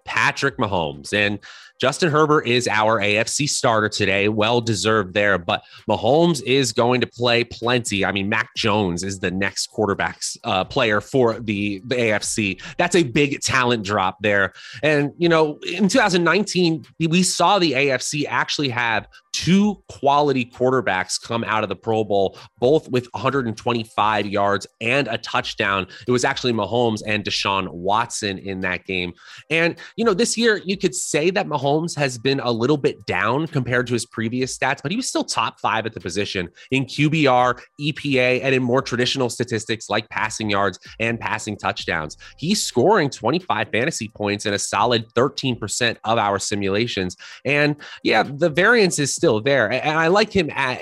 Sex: male